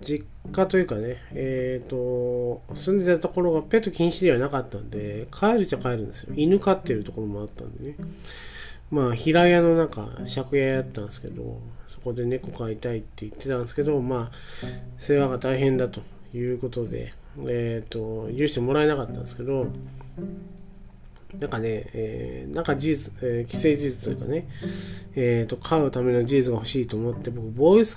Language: Japanese